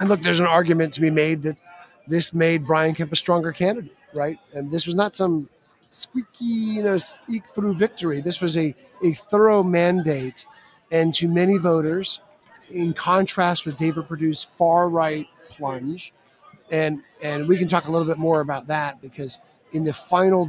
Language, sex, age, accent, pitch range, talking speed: English, male, 30-49, American, 155-190 Hz, 180 wpm